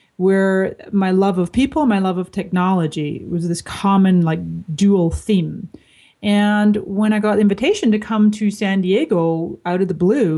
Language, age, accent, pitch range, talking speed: English, 30-49, American, 170-210 Hz, 175 wpm